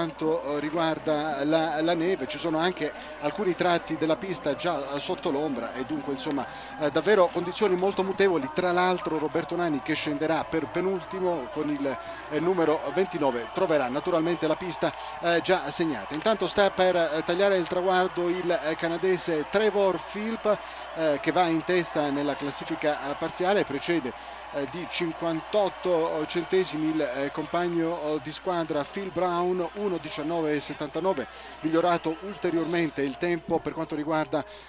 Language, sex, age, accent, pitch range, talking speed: Italian, male, 40-59, native, 150-180 Hz, 130 wpm